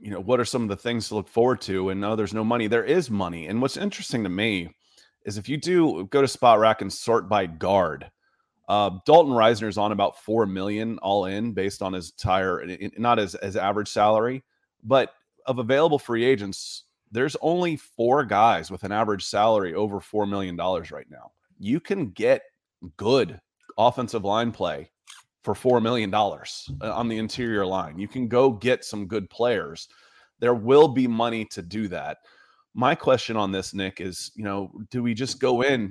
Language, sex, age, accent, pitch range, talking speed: English, male, 30-49, American, 100-125 Hz, 195 wpm